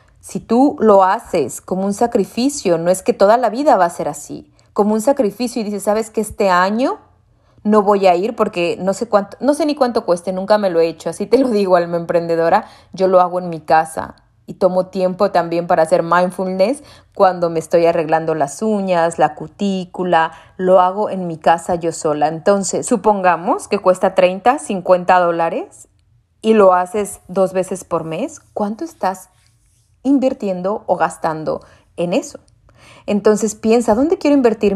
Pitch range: 180-240 Hz